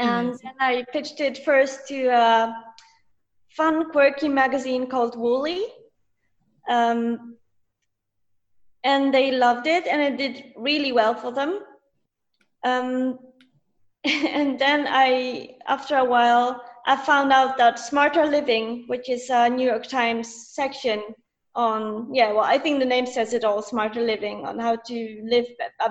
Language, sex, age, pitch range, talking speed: English, female, 20-39, 235-275 Hz, 145 wpm